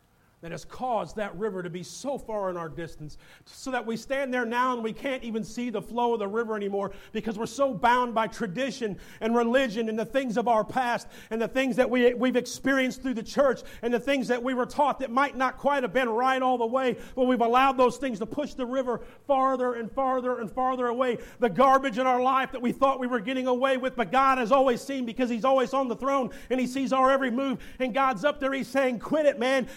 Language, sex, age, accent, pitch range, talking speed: English, male, 40-59, American, 200-260 Hz, 250 wpm